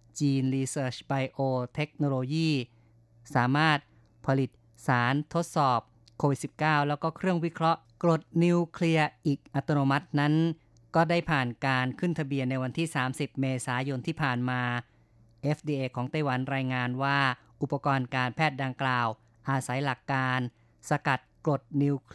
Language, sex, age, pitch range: Thai, female, 20-39, 125-155 Hz